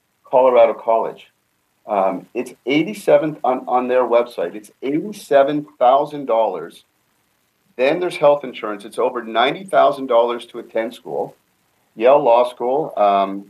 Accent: American